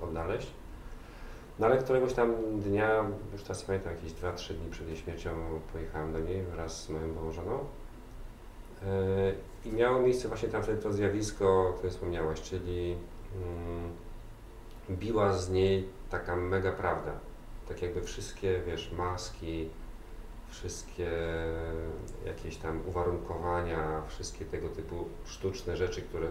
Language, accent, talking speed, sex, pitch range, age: Polish, native, 130 wpm, male, 85-105 Hz, 40-59